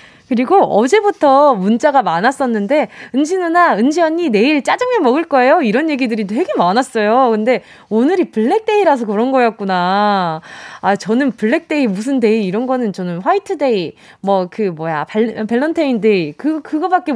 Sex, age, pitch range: female, 20-39, 210-330 Hz